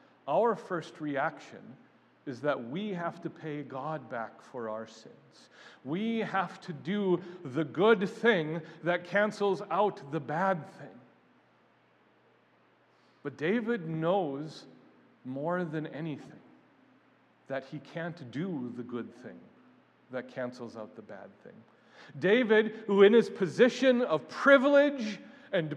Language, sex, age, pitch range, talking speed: English, male, 40-59, 155-240 Hz, 125 wpm